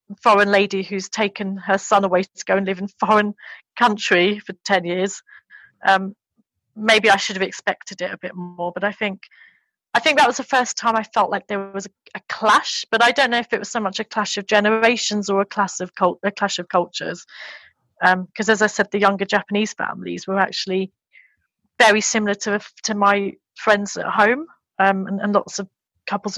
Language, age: English, 30-49